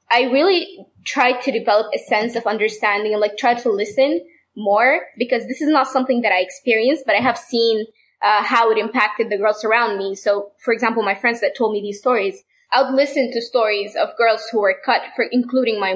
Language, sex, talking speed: English, female, 220 wpm